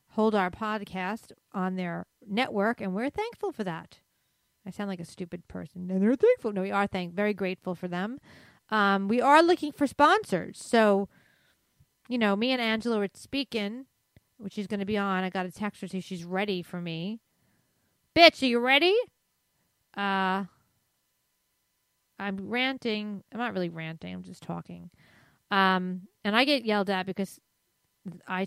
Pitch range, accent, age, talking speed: 185-240 Hz, American, 40-59, 170 wpm